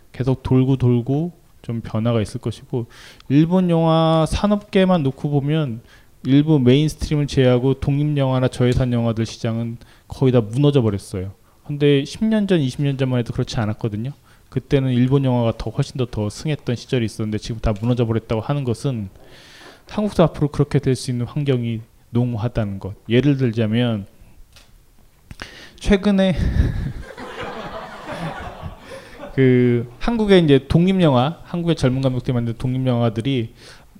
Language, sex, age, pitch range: Korean, male, 20-39, 120-155 Hz